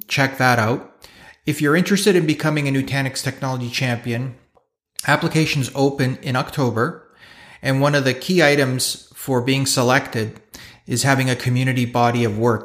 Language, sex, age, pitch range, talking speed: English, male, 30-49, 125-150 Hz, 150 wpm